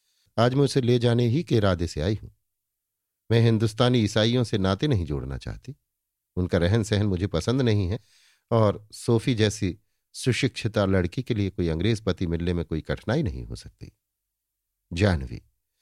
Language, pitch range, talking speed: Hindi, 95-115 Hz, 165 wpm